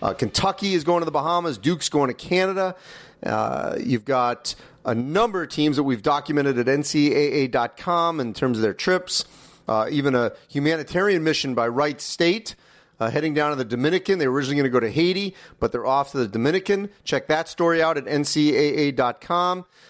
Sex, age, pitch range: male, 40-59, 140-185 Hz